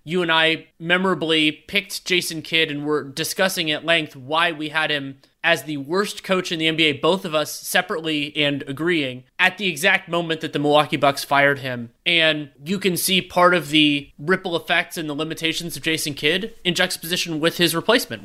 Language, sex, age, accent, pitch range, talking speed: English, male, 30-49, American, 145-180 Hz, 195 wpm